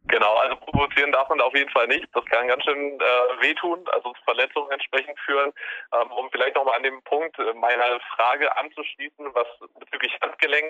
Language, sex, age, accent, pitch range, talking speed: German, male, 30-49, German, 125-155 Hz, 190 wpm